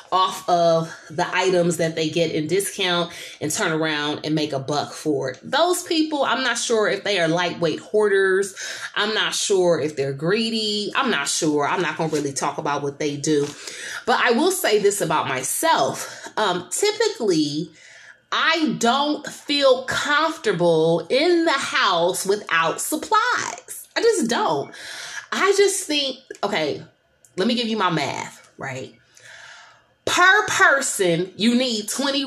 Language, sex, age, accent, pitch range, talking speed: English, female, 20-39, American, 170-255 Hz, 155 wpm